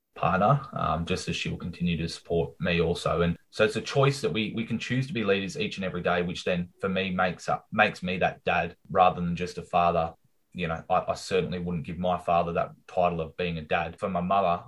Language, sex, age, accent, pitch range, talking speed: English, male, 20-39, Australian, 85-100 Hz, 250 wpm